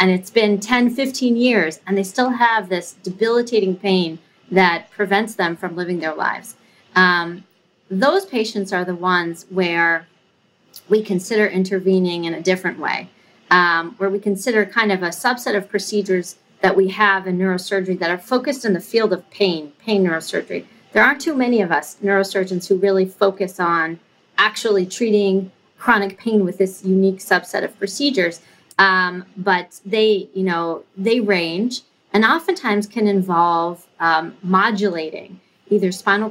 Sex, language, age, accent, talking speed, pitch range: female, English, 40-59, American, 155 wpm, 180-210 Hz